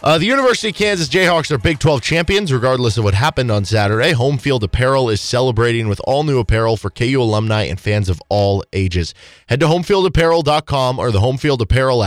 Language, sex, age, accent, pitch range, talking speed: English, male, 20-39, American, 110-150 Hz, 195 wpm